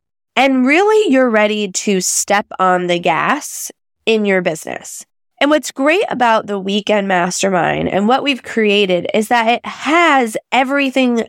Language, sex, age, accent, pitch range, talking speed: English, female, 20-39, American, 185-255 Hz, 150 wpm